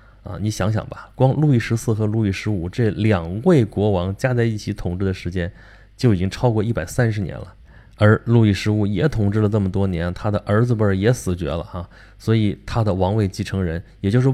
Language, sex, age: Chinese, male, 20-39